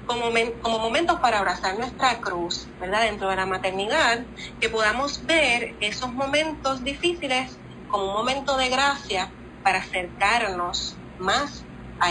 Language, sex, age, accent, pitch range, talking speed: Spanish, female, 30-49, American, 190-255 Hz, 130 wpm